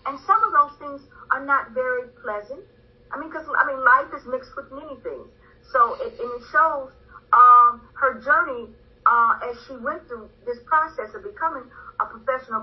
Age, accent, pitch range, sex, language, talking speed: 50-69, American, 265-390 Hz, female, English, 185 wpm